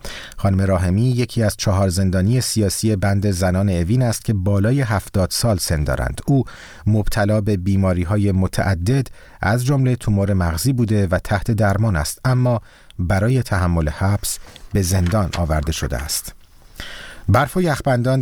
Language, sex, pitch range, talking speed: Persian, male, 90-110 Hz, 145 wpm